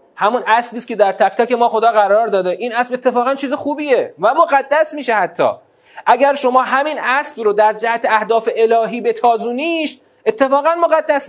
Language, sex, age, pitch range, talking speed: Persian, male, 30-49, 185-275 Hz, 175 wpm